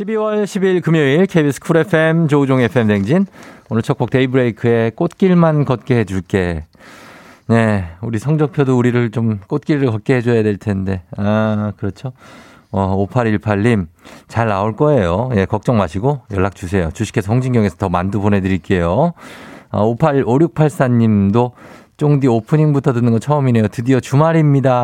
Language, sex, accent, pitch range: Korean, male, native, 100-140 Hz